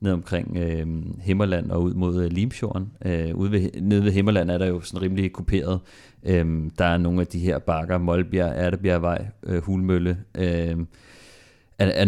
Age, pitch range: 30-49, 90-100 Hz